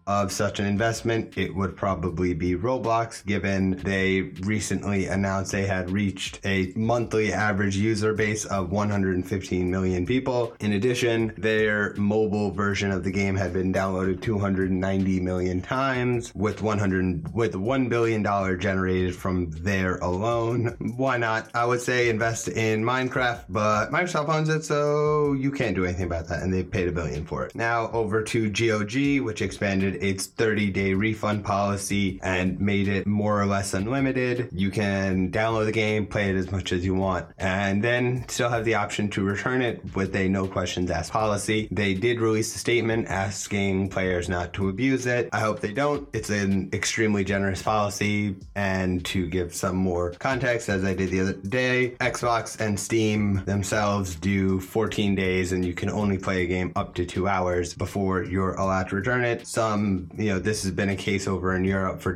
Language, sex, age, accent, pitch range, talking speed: English, male, 30-49, American, 95-110 Hz, 180 wpm